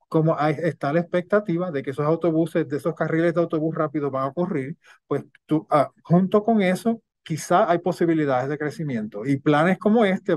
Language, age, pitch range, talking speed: English, 30-49, 140-165 Hz, 190 wpm